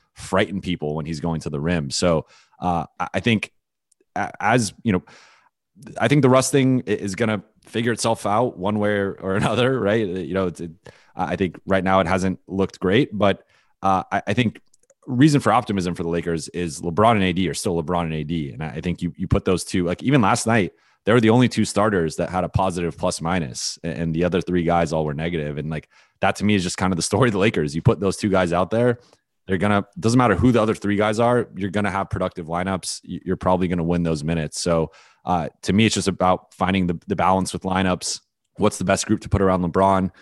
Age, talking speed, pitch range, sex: 30-49, 240 wpm, 85-100 Hz, male